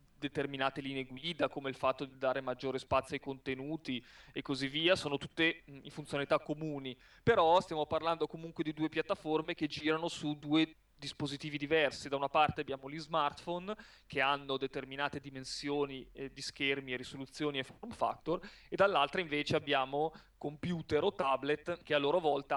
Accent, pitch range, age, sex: native, 135-155 Hz, 30-49, male